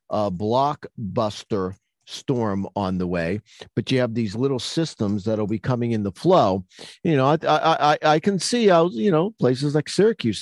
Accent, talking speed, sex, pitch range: American, 185 wpm, male, 115-160 Hz